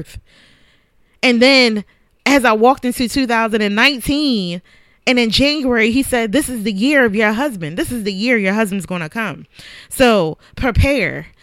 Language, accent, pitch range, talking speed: English, American, 205-250 Hz, 155 wpm